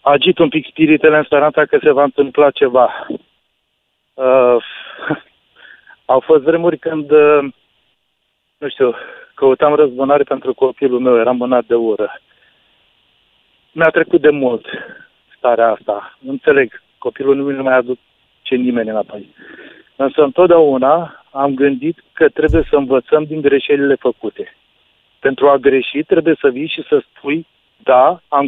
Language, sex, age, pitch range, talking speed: Romanian, male, 40-59, 135-165 Hz, 135 wpm